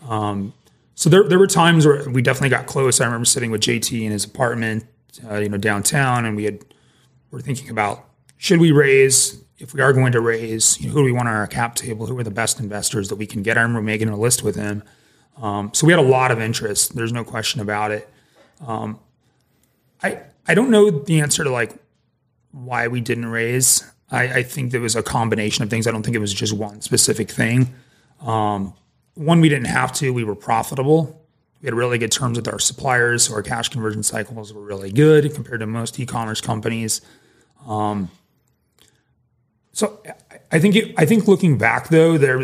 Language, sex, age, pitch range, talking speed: English, male, 30-49, 110-130 Hz, 210 wpm